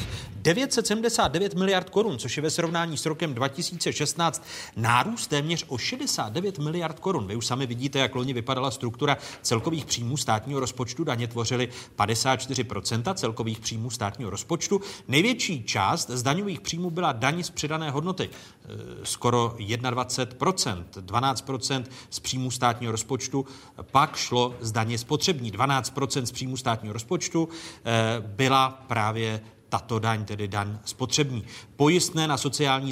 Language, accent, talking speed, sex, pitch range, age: Czech, native, 130 wpm, male, 120-165 Hz, 40-59